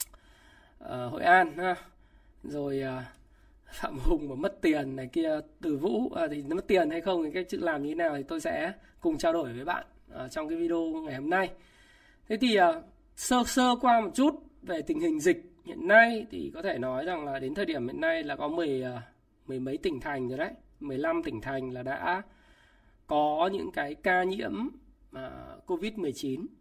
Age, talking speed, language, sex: 20-39, 185 wpm, Vietnamese, male